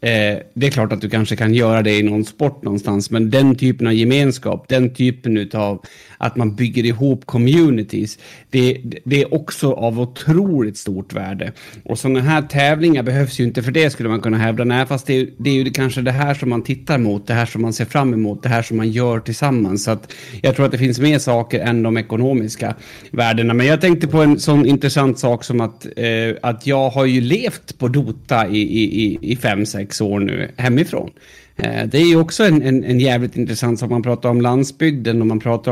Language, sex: English, male